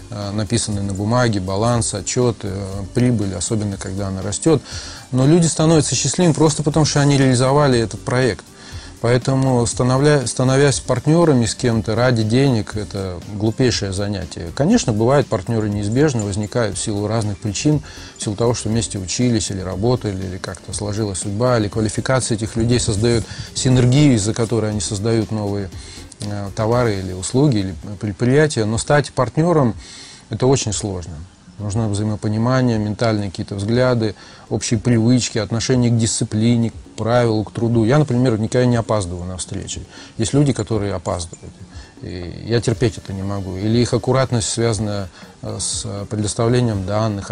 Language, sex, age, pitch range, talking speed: Russian, male, 30-49, 100-125 Hz, 145 wpm